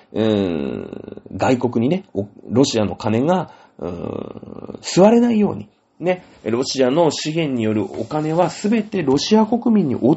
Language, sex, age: Japanese, male, 40-59